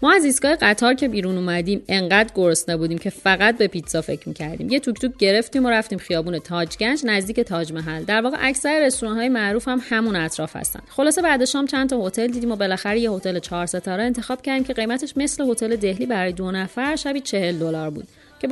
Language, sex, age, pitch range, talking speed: Persian, female, 30-49, 185-240 Hz, 205 wpm